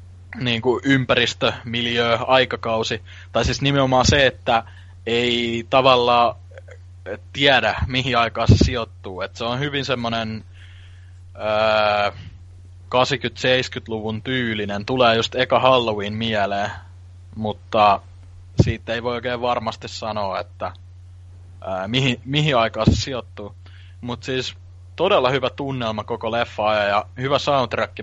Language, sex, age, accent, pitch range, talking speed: Finnish, male, 20-39, native, 90-120 Hz, 115 wpm